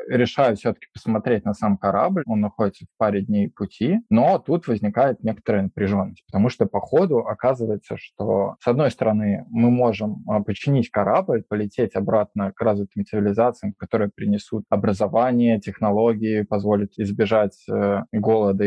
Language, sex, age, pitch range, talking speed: Russian, male, 20-39, 100-115 Hz, 140 wpm